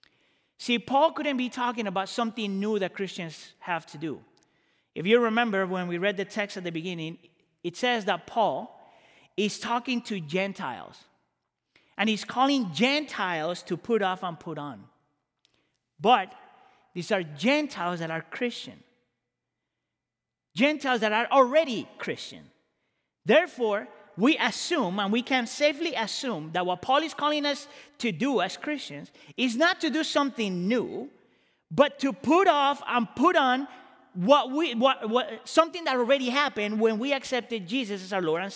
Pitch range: 185-270 Hz